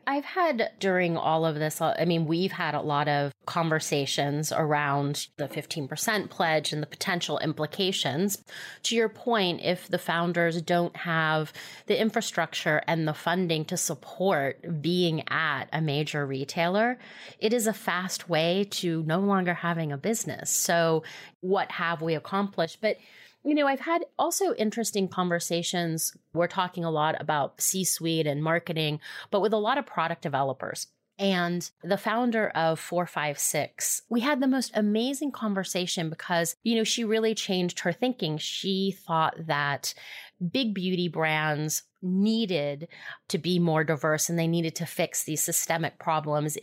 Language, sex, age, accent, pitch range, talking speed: English, female, 30-49, American, 155-200 Hz, 155 wpm